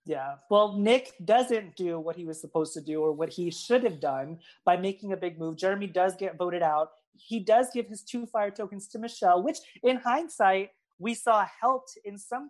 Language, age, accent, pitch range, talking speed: English, 30-49, American, 180-230 Hz, 210 wpm